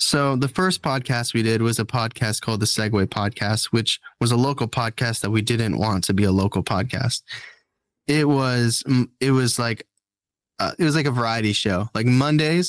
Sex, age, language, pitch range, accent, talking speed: male, 10-29, English, 110-130 Hz, American, 195 wpm